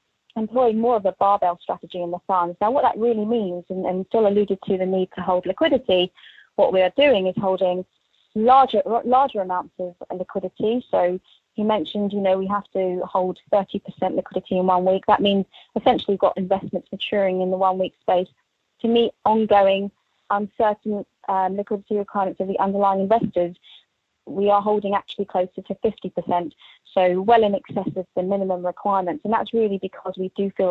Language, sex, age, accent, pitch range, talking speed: English, female, 20-39, British, 180-205 Hz, 180 wpm